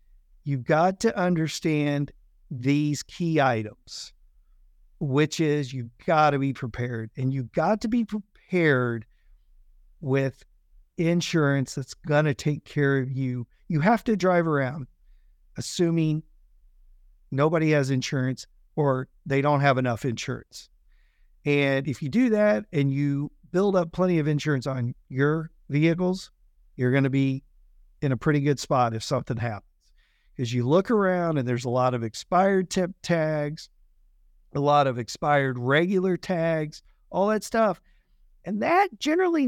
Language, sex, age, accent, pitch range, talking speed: English, male, 50-69, American, 135-185 Hz, 145 wpm